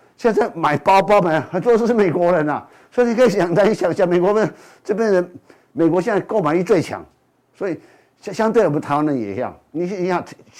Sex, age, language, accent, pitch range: male, 50-69, Chinese, native, 145-195 Hz